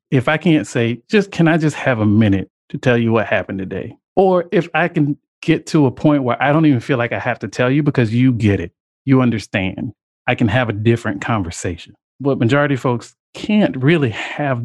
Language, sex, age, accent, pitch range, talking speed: English, male, 40-59, American, 110-135 Hz, 225 wpm